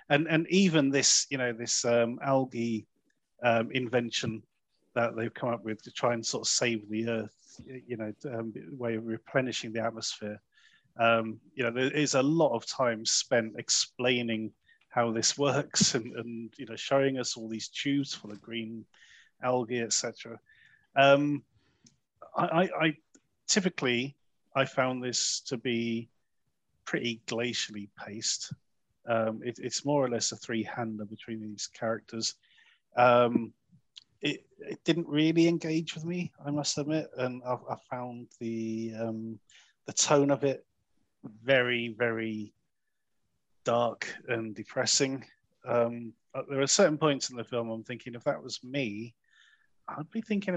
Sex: male